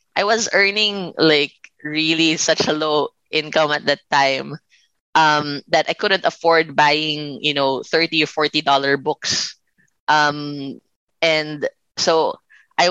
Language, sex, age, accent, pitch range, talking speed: English, female, 20-39, Filipino, 145-165 Hz, 130 wpm